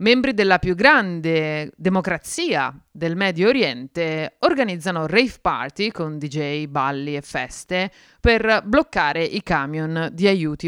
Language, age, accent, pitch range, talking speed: Italian, 30-49, native, 150-190 Hz, 125 wpm